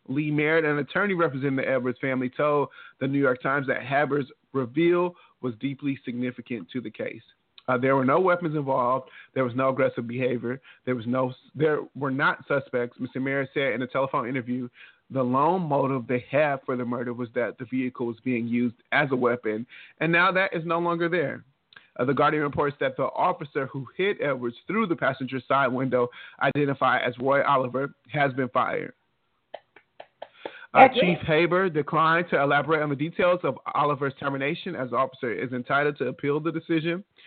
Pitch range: 125-150 Hz